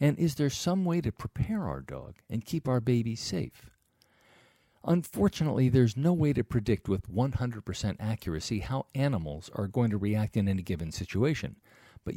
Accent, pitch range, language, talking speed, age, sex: American, 100-130 Hz, English, 170 wpm, 50-69, male